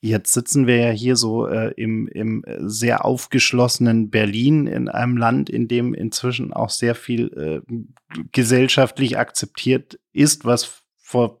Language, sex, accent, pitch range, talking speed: German, male, German, 110-130 Hz, 140 wpm